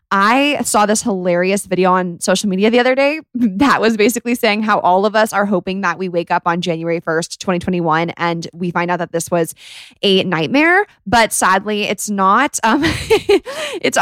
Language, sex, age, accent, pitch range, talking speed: English, female, 20-39, American, 195-245 Hz, 190 wpm